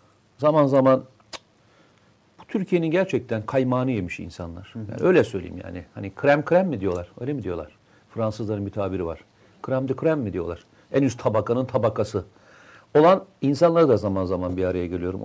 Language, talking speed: Turkish, 155 wpm